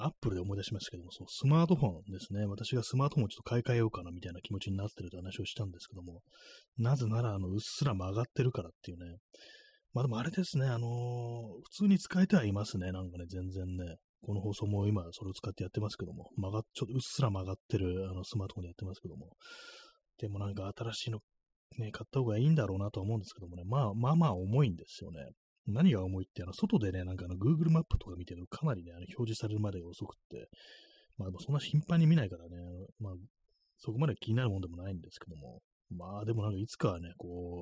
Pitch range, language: 95-120 Hz, Japanese